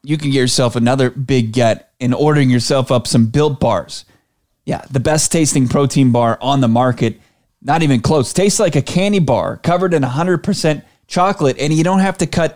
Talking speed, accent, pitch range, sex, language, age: 195 wpm, American, 130-170 Hz, male, English, 30-49